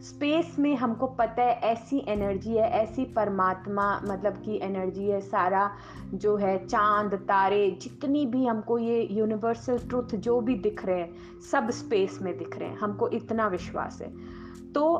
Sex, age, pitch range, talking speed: female, 20-39, 195-255 Hz, 165 wpm